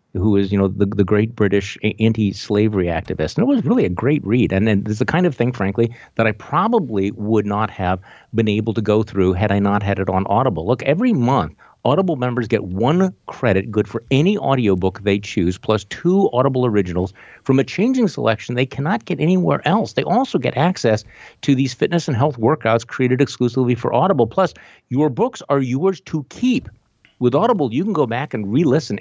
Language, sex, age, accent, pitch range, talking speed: English, male, 50-69, American, 105-155 Hz, 205 wpm